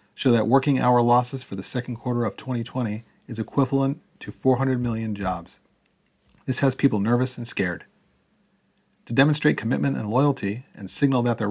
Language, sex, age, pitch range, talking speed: English, male, 40-59, 105-130 Hz, 165 wpm